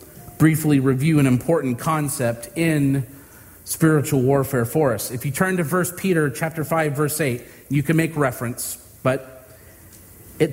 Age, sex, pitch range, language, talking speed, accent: 40-59, male, 120-185 Hz, English, 150 wpm, American